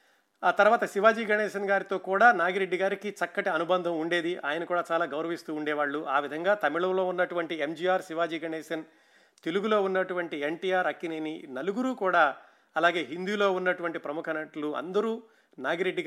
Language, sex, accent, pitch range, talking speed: Telugu, male, native, 145-185 Hz, 130 wpm